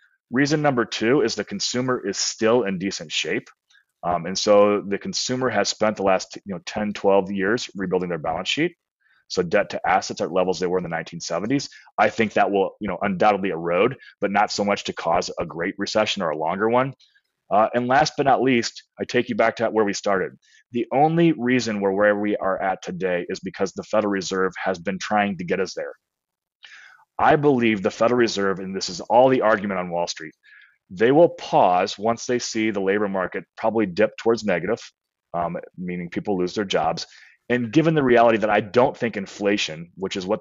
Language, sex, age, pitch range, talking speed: English, male, 30-49, 95-115 Hz, 210 wpm